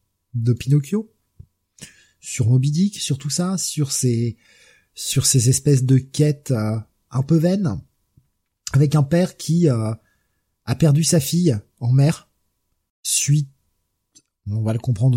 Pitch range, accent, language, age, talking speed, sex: 115-145 Hz, French, French, 20-39, 135 wpm, male